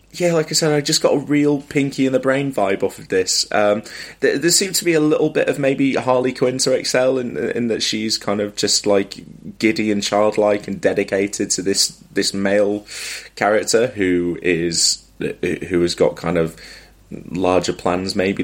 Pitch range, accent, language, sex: 90-110 Hz, British, English, male